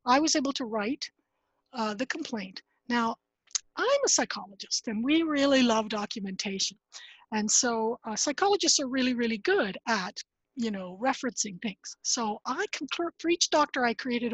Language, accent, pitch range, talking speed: English, American, 220-295 Hz, 160 wpm